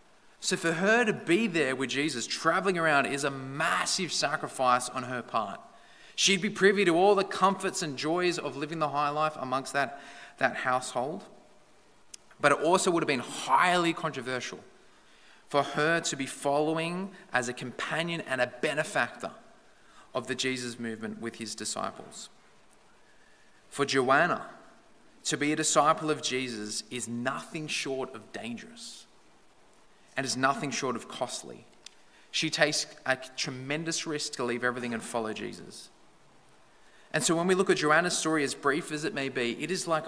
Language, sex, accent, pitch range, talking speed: English, male, Australian, 130-160 Hz, 160 wpm